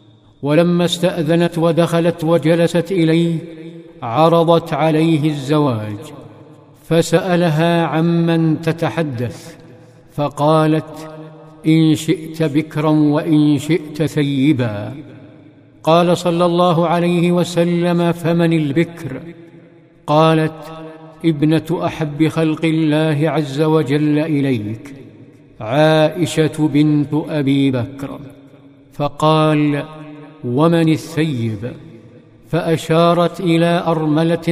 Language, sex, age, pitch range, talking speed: Arabic, male, 60-79, 150-165 Hz, 75 wpm